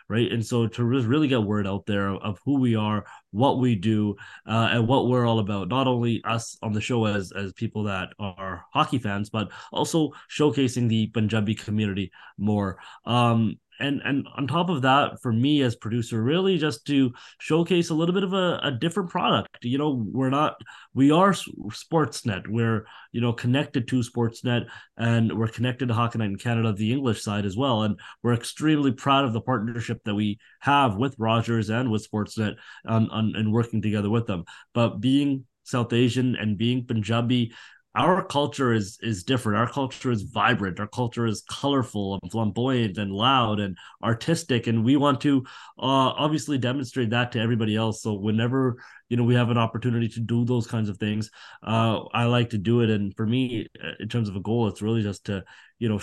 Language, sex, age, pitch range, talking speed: English, male, 30-49, 110-130 Hz, 195 wpm